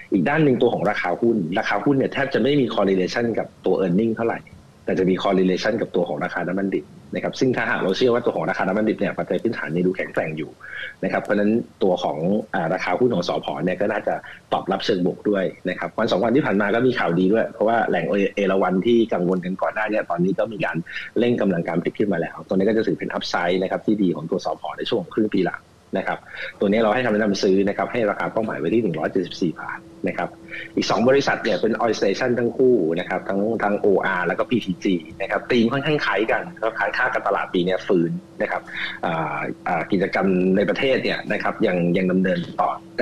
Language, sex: Thai, male